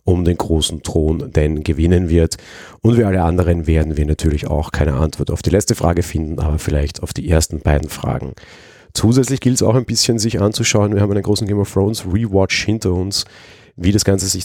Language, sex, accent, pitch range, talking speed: German, male, German, 80-105 Hz, 210 wpm